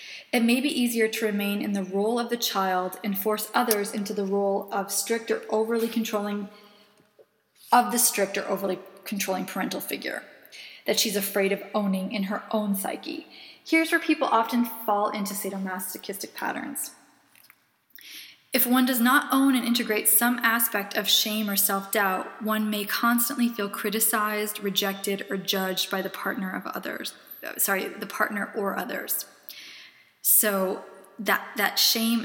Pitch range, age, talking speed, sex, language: 195-220 Hz, 20-39, 155 wpm, female, English